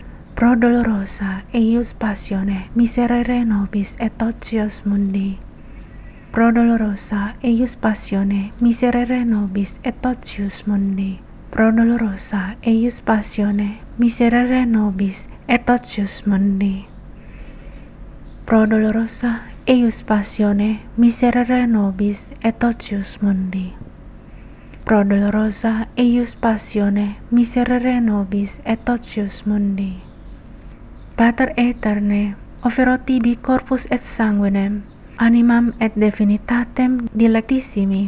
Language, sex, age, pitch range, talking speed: English, female, 20-39, 205-240 Hz, 85 wpm